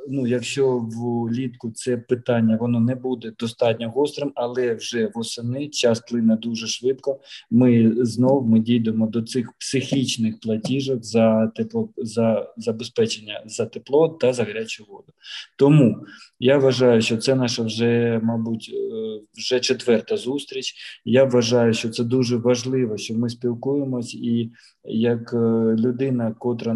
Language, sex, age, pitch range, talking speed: Ukrainian, male, 20-39, 115-125 Hz, 130 wpm